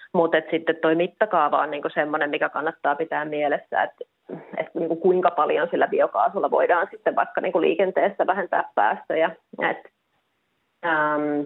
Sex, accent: female, native